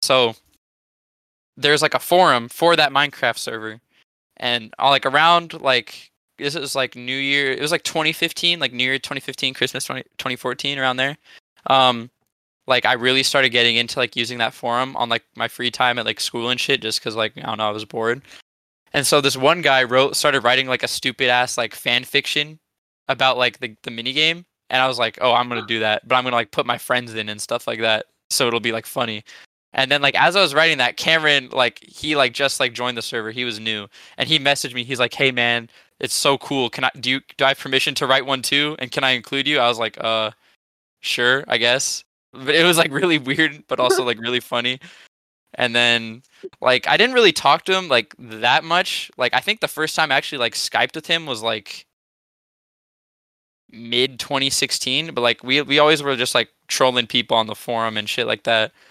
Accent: American